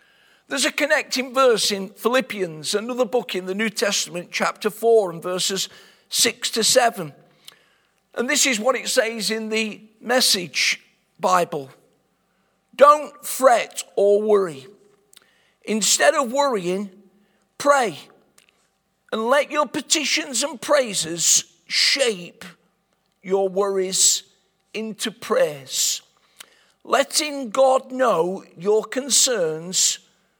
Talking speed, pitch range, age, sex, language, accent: 105 wpm, 195-245 Hz, 50-69, male, English, British